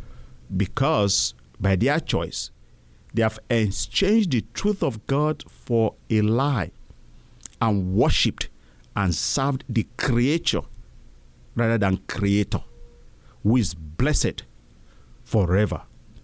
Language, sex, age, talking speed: English, male, 50-69, 100 wpm